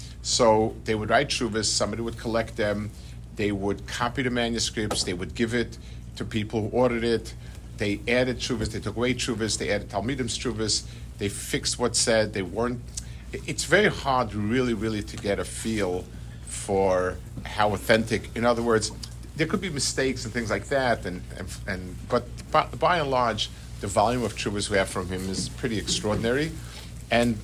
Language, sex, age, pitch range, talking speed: English, male, 50-69, 95-120 Hz, 180 wpm